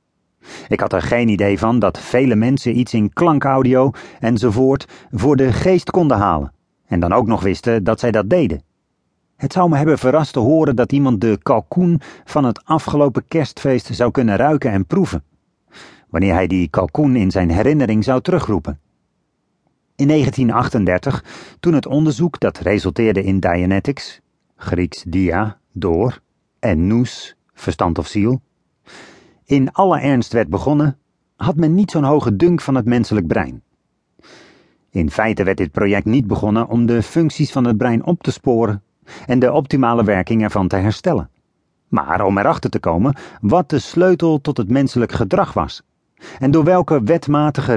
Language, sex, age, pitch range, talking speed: English, male, 40-59, 105-145 Hz, 160 wpm